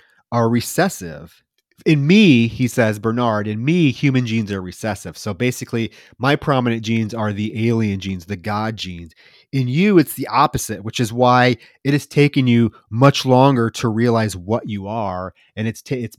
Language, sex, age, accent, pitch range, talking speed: English, male, 30-49, American, 105-140 Hz, 175 wpm